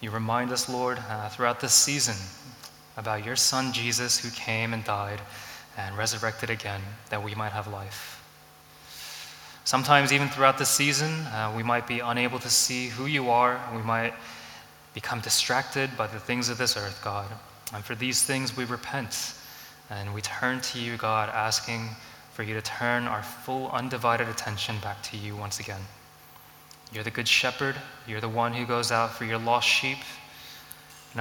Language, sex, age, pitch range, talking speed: English, male, 20-39, 110-125 Hz, 175 wpm